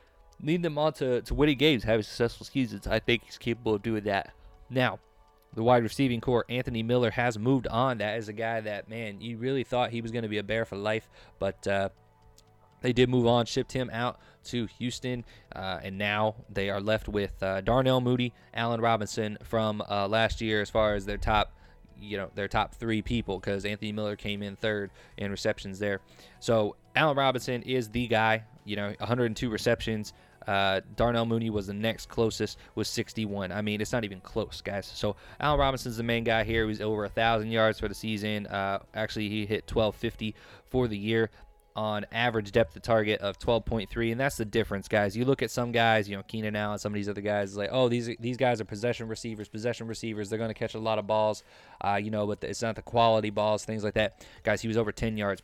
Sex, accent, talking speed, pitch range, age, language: male, American, 225 wpm, 105-120 Hz, 20-39, English